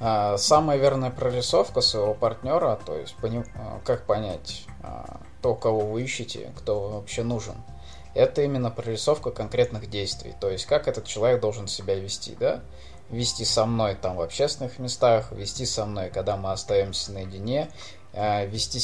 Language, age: Russian, 20-39